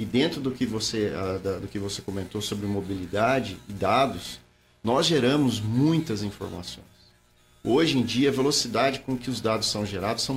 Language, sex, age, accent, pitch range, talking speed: Portuguese, male, 40-59, Brazilian, 100-140 Hz, 170 wpm